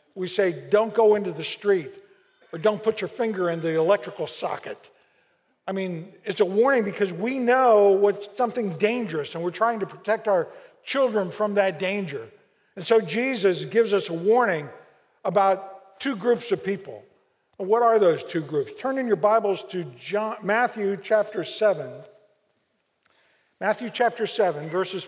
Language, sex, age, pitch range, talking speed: English, male, 50-69, 180-240 Hz, 160 wpm